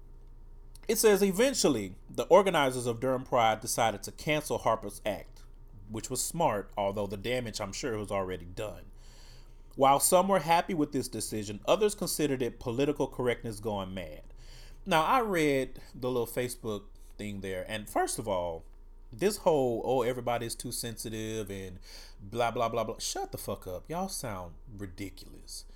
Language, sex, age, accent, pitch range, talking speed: English, male, 30-49, American, 110-170 Hz, 160 wpm